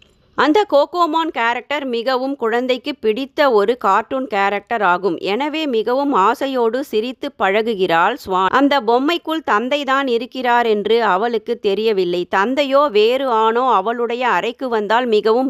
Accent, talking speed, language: native, 115 wpm, Tamil